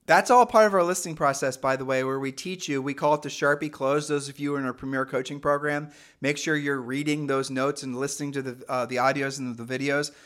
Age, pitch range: 40-59, 135-165 Hz